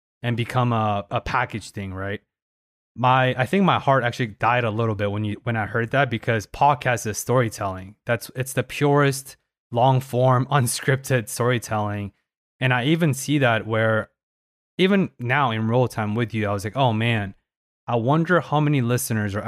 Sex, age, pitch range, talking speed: male, 20-39, 105-130 Hz, 180 wpm